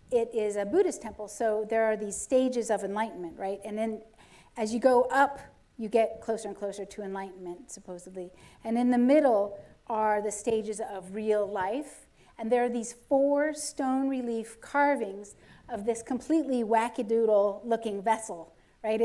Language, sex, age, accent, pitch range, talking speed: English, female, 40-59, American, 210-240 Hz, 160 wpm